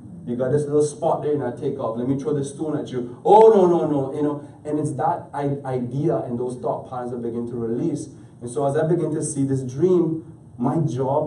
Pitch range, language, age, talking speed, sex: 115-150 Hz, English, 30-49, 245 wpm, male